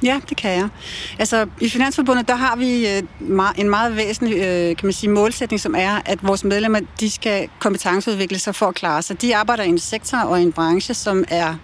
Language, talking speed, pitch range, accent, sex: Danish, 205 wpm, 185-235 Hz, native, female